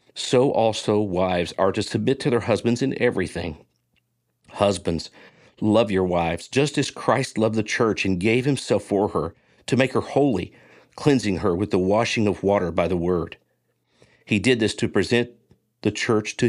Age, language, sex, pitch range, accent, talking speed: 50-69, English, male, 95-120 Hz, American, 175 wpm